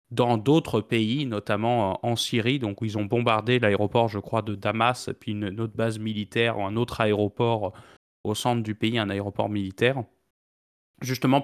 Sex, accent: male, French